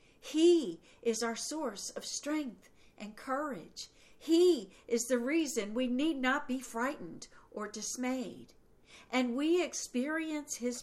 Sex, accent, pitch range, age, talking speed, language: female, American, 210-280 Hz, 50-69, 125 wpm, English